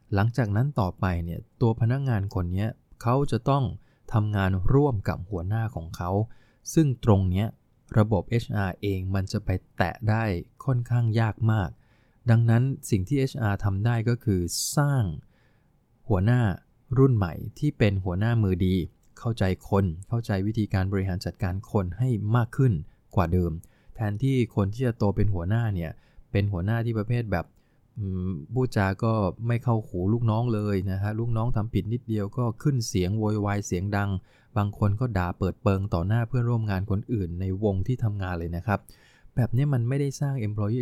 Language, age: English, 20-39